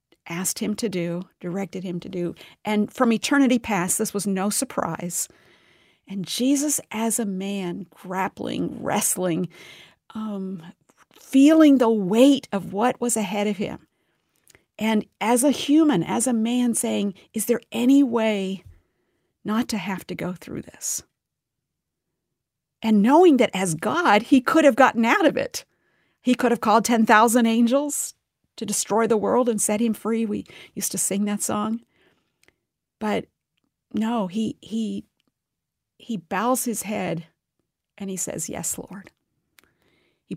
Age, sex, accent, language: 50-69, female, American, English